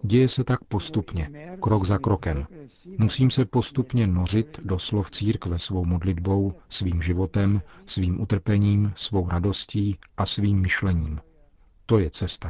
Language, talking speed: Czech, 130 wpm